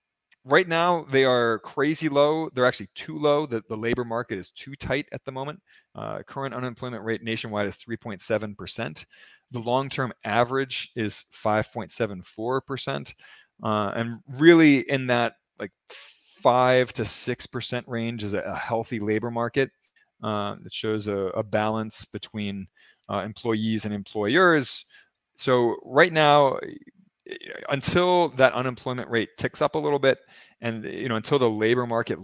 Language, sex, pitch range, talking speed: English, male, 110-145 Hz, 145 wpm